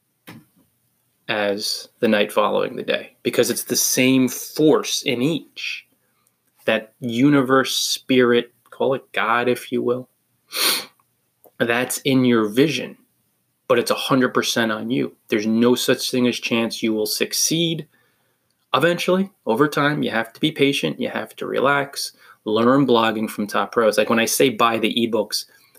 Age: 20-39